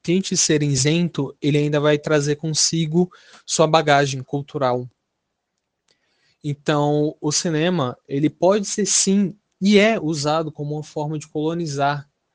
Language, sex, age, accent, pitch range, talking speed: Portuguese, male, 20-39, Brazilian, 145-170 Hz, 125 wpm